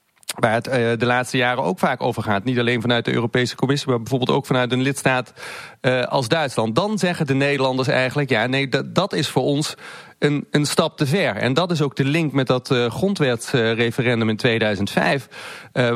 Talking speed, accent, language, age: 205 wpm, Dutch, Dutch, 40-59